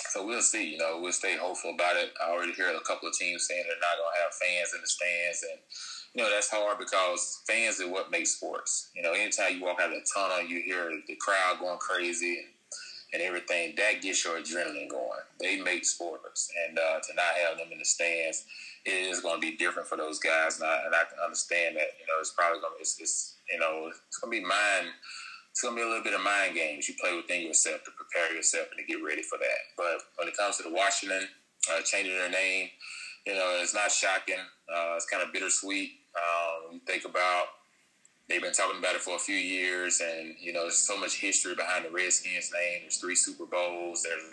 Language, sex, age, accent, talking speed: English, male, 20-39, American, 235 wpm